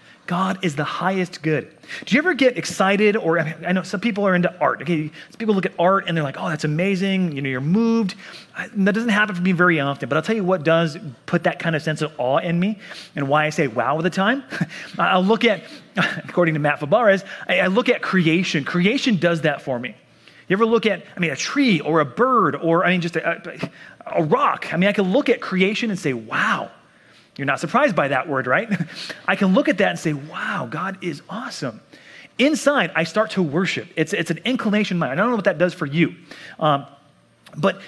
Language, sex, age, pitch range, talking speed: English, male, 30-49, 160-205 Hz, 235 wpm